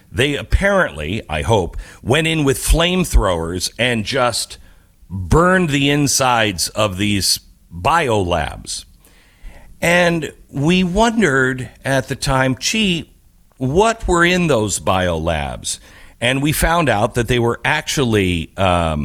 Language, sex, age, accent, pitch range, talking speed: English, male, 50-69, American, 90-135 Hz, 125 wpm